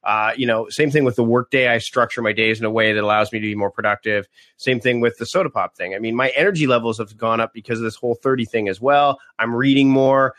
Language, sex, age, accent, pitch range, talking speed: English, male, 30-49, American, 115-140 Hz, 275 wpm